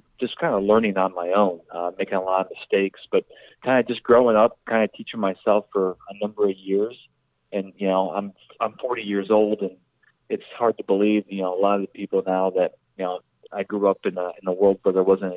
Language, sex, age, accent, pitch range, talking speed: English, male, 30-49, American, 95-110 Hz, 245 wpm